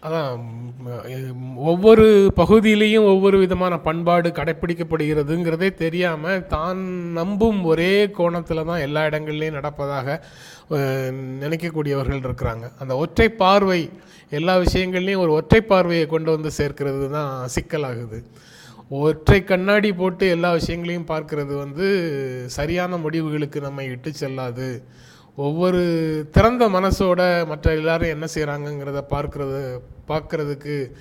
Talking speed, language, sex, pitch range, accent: 100 wpm, Tamil, male, 145-180 Hz, native